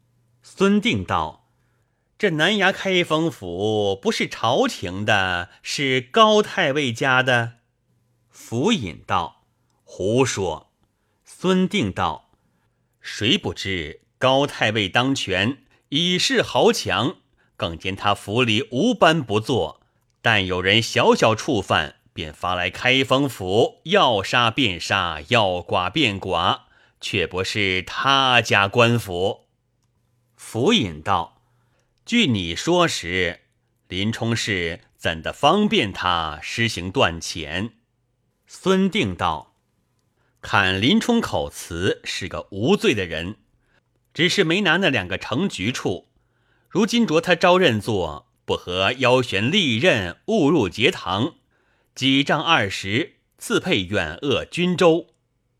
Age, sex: 30-49, male